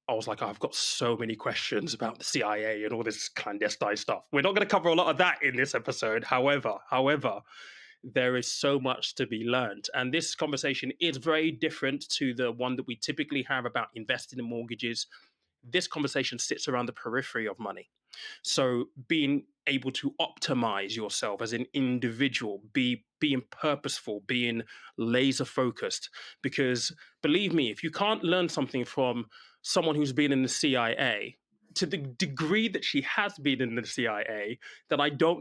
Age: 20-39